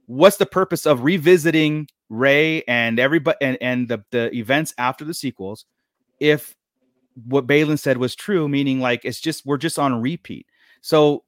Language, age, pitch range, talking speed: English, 30-49, 120-150 Hz, 165 wpm